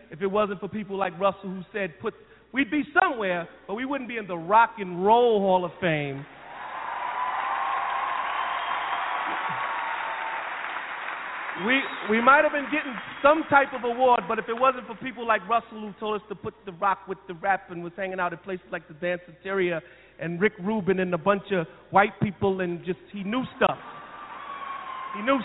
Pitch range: 180-205 Hz